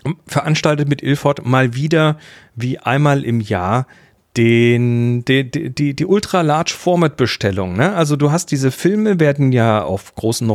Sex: male